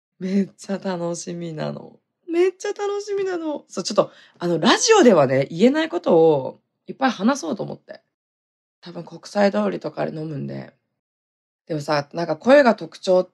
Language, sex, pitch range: Japanese, female, 170-255 Hz